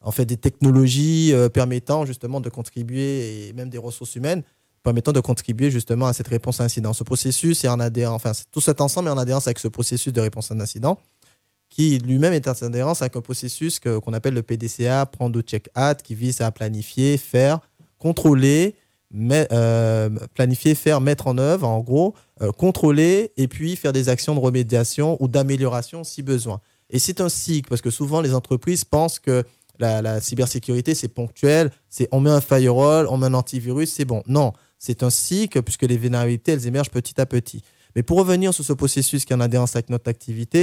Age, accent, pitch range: 20-39, French, 115-145 Hz